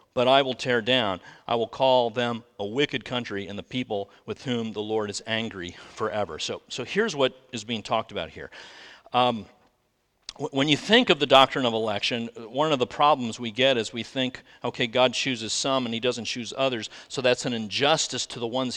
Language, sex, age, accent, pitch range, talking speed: English, male, 40-59, American, 120-170 Hz, 210 wpm